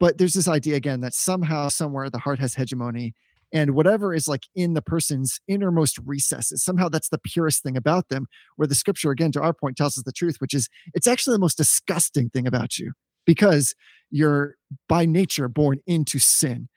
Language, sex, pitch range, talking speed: English, male, 140-180 Hz, 200 wpm